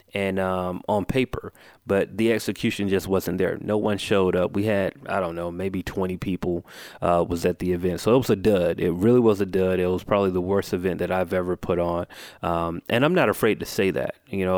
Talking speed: 240 wpm